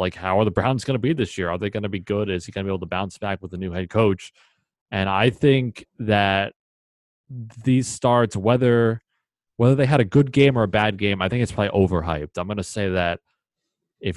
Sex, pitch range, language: male, 90-105 Hz, English